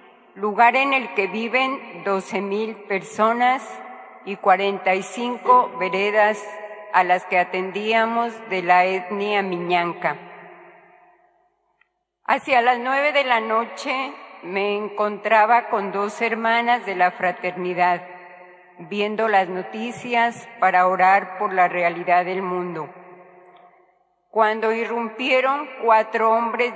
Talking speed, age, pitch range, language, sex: 110 wpm, 40-59, 190-230 Hz, Spanish, female